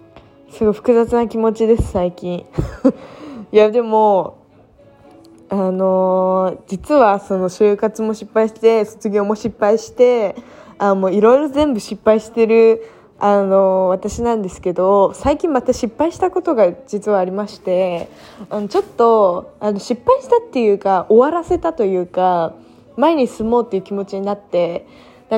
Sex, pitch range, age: female, 200-285 Hz, 20-39